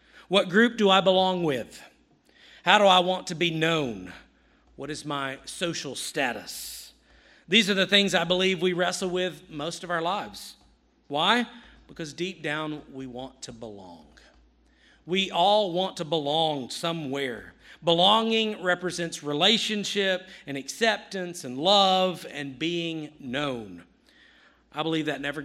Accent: American